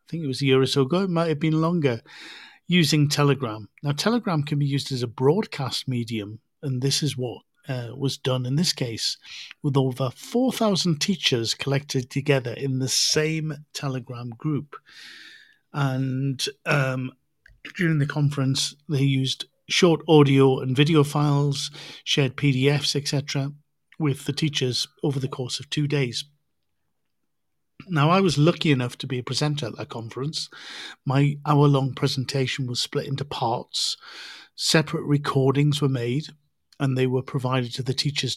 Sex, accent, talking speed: male, British, 155 wpm